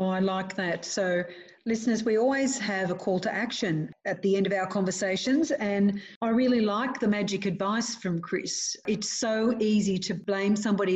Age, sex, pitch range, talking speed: 40-59, female, 185-230 Hz, 185 wpm